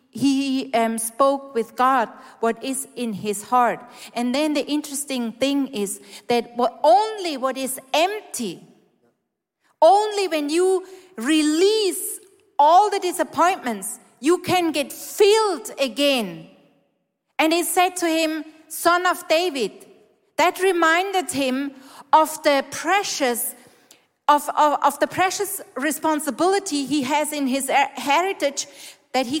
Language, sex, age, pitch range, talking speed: English, female, 40-59, 255-350 Hz, 125 wpm